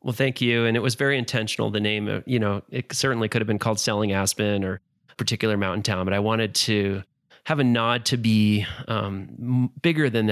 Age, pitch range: 30-49, 100-120 Hz